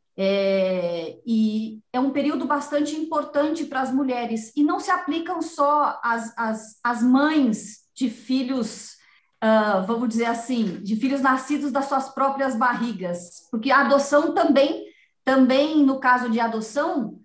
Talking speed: 145 wpm